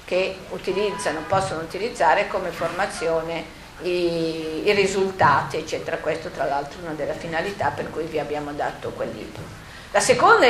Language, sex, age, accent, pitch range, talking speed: Italian, female, 40-59, native, 180-230 Hz, 150 wpm